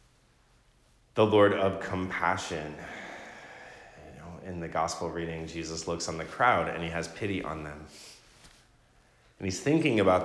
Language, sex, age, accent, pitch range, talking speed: English, male, 30-49, American, 75-90 Hz, 145 wpm